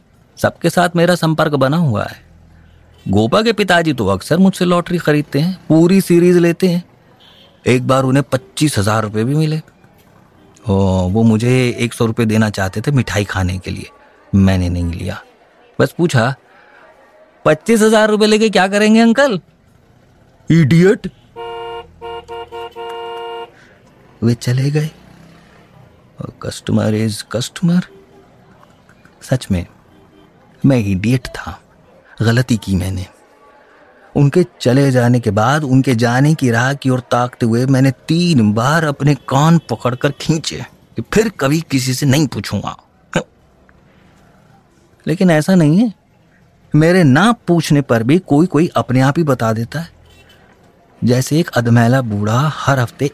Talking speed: 135 wpm